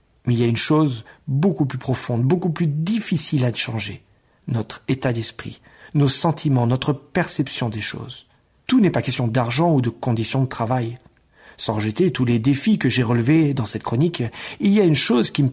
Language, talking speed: French, 195 wpm